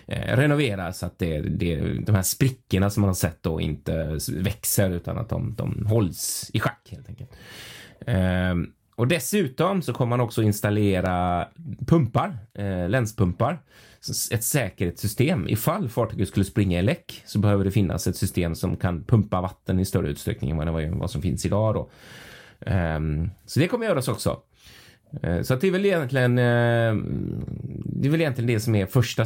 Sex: male